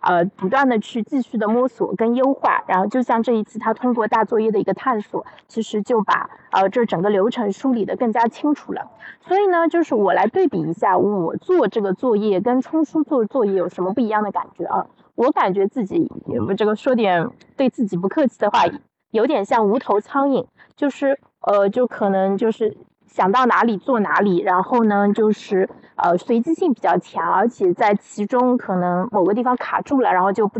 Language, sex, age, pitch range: Chinese, female, 20-39, 195-260 Hz